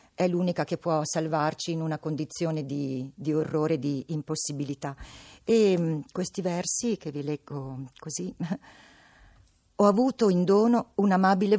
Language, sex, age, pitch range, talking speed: Italian, female, 50-69, 155-190 Hz, 135 wpm